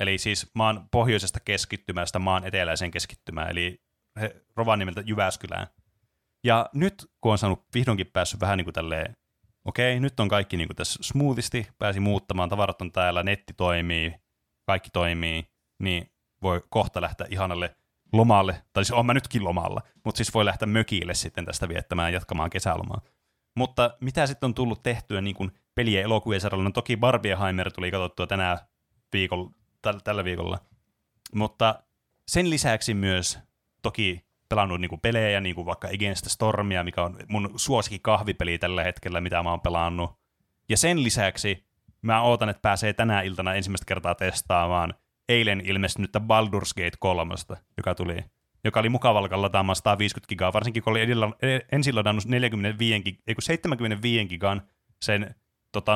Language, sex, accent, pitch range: Finnish, male, native, 90-110 Hz